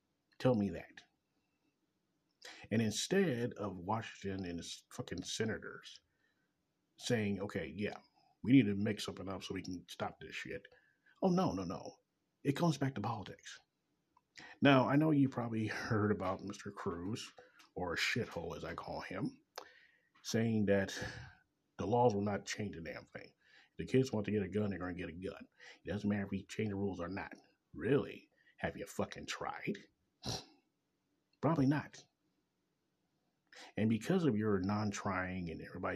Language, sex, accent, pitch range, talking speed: English, male, American, 95-125 Hz, 165 wpm